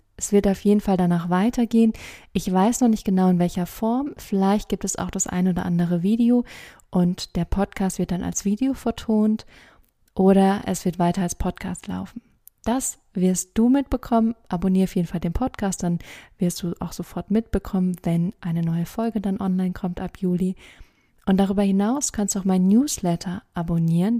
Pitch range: 180-215 Hz